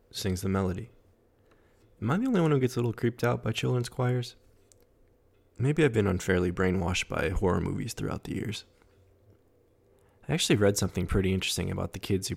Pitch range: 90-105 Hz